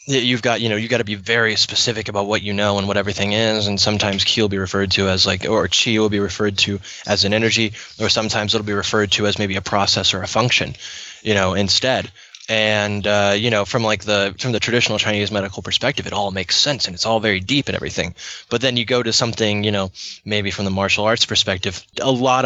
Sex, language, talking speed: male, English, 250 wpm